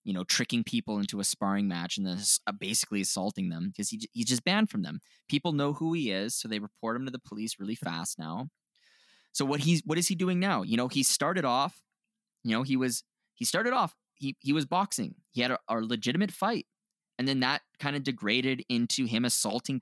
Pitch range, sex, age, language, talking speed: 115-185 Hz, male, 20-39, English, 225 wpm